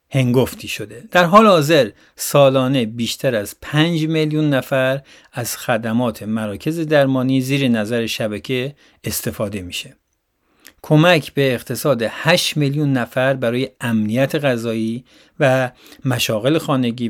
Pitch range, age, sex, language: 115-150 Hz, 50-69, male, Persian